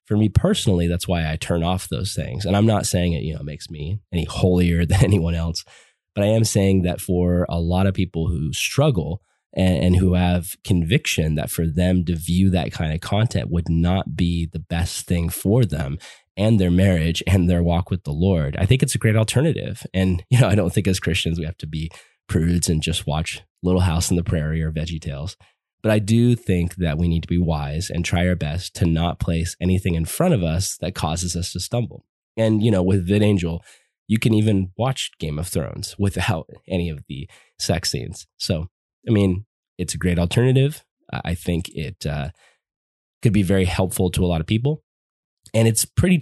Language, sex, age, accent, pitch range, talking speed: English, male, 20-39, American, 85-100 Hz, 215 wpm